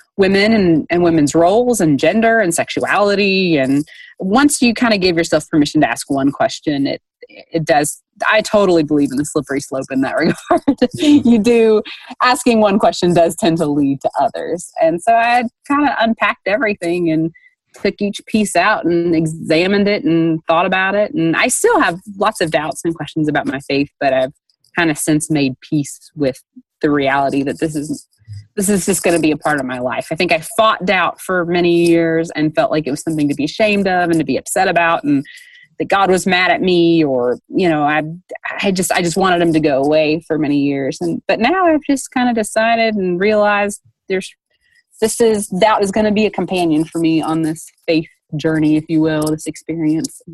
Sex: female